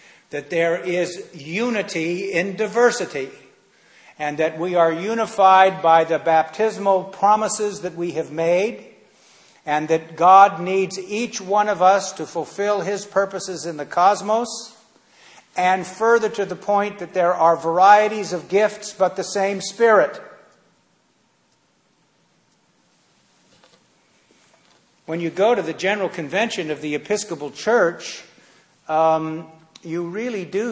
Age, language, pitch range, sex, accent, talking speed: 50-69, English, 160-195 Hz, male, American, 125 wpm